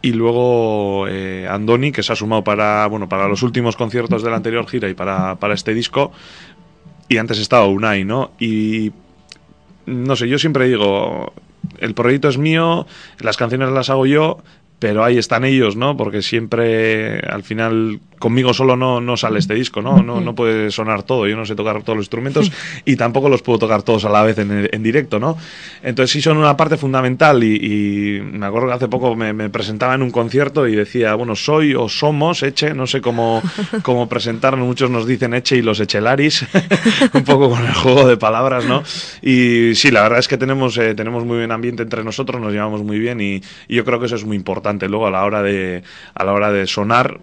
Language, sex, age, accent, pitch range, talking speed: Spanish, male, 20-39, Spanish, 105-135 Hz, 215 wpm